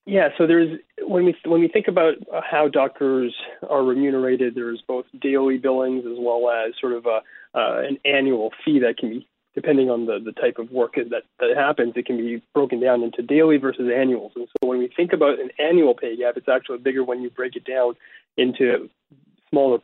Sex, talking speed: male, 210 wpm